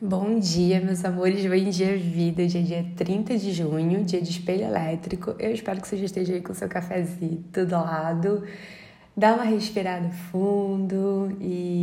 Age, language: 20-39, Portuguese